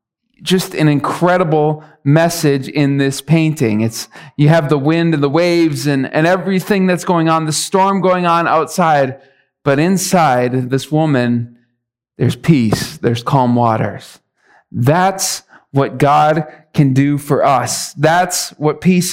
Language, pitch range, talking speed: English, 150-195 Hz, 140 wpm